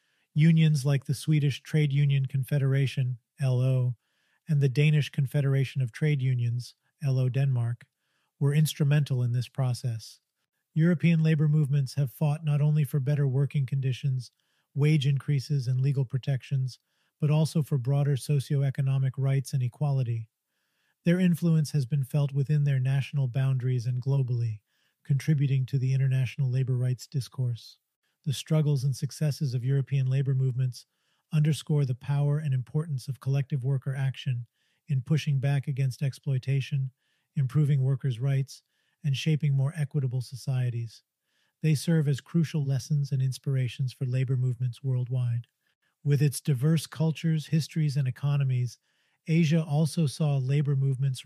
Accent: American